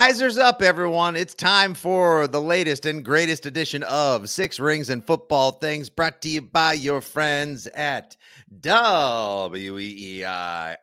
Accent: American